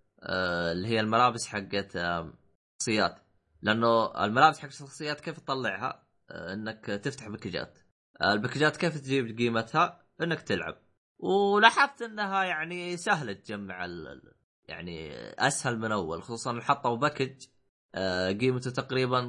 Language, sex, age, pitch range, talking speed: Arabic, male, 20-39, 100-140 Hz, 105 wpm